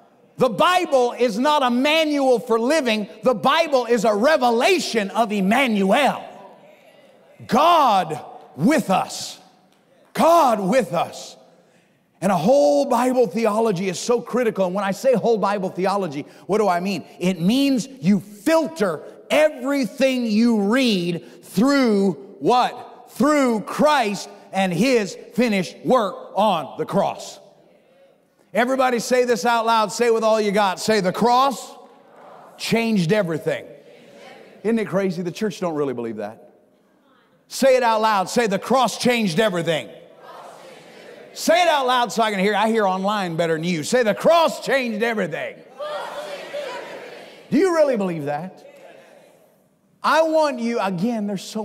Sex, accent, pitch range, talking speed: male, American, 195-255 Hz, 140 wpm